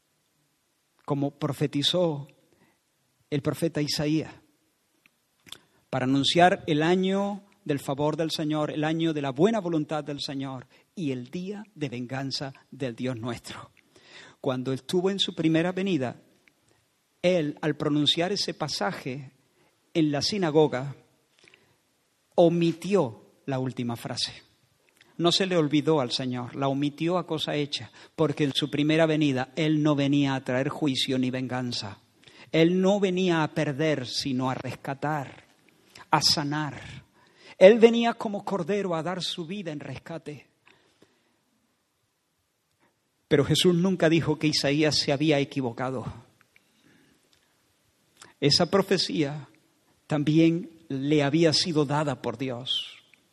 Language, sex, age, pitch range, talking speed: Spanish, male, 50-69, 135-165 Hz, 125 wpm